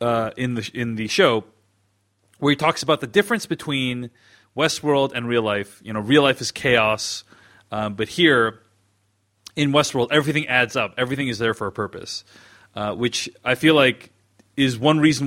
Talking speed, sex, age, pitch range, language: 175 wpm, male, 30-49, 110-155 Hz, English